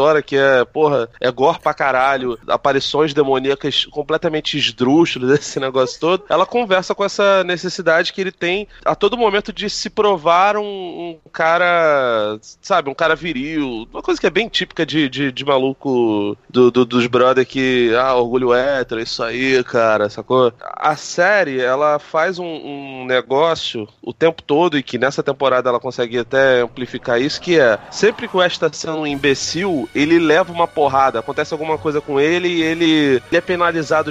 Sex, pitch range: male, 125-170 Hz